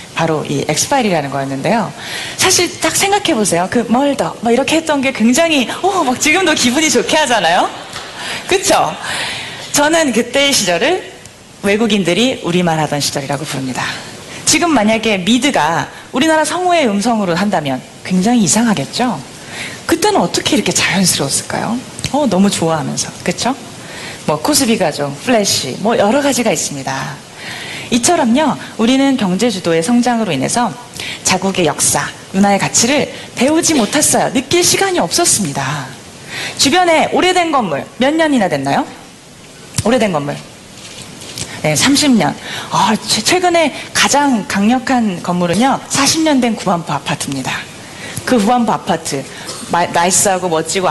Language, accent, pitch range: Korean, native, 175-290 Hz